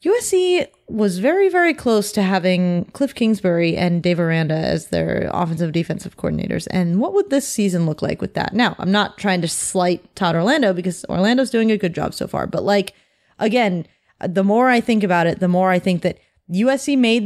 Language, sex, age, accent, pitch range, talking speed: English, female, 30-49, American, 180-245 Hz, 205 wpm